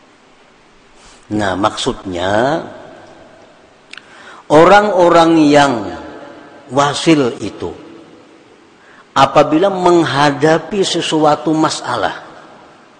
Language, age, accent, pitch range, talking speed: Indonesian, 50-69, native, 105-155 Hz, 45 wpm